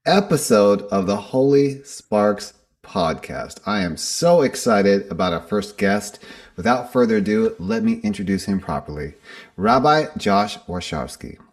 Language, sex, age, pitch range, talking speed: English, male, 30-49, 95-140 Hz, 130 wpm